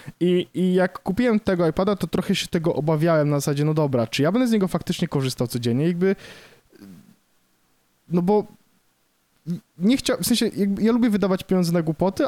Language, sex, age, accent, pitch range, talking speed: Polish, male, 20-39, native, 140-180 Hz, 175 wpm